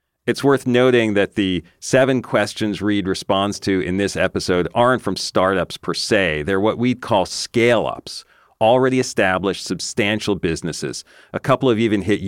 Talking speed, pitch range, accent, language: 155 wpm, 90-120 Hz, American, English